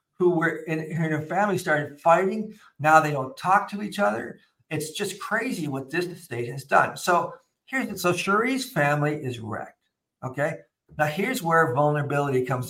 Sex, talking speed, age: male, 175 wpm, 50-69